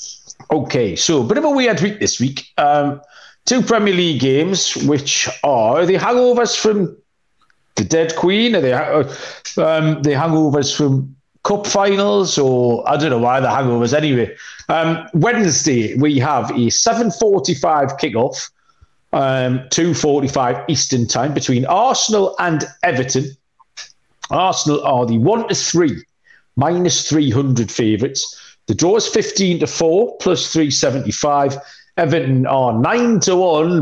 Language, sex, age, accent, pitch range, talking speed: English, male, 40-59, British, 130-175 Hz, 135 wpm